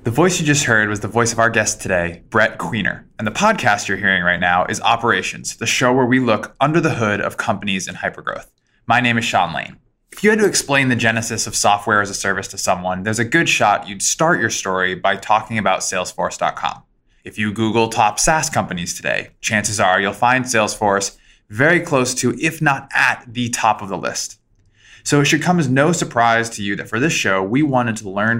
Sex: male